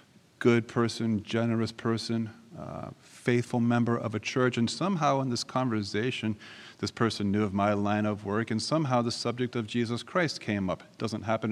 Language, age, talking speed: English, 40-59, 175 wpm